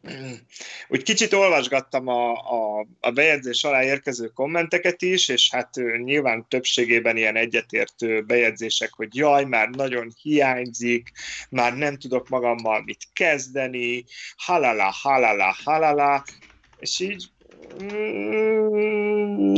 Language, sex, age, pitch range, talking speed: Hungarian, male, 30-49, 115-165 Hz, 115 wpm